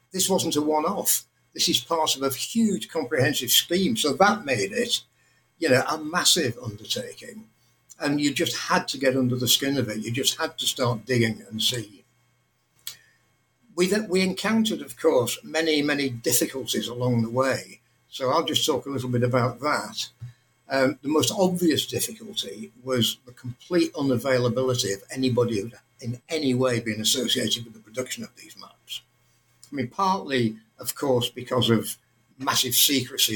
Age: 60-79